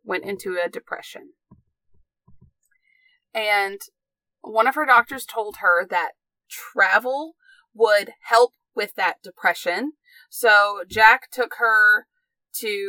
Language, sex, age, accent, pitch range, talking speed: English, female, 30-49, American, 210-300 Hz, 105 wpm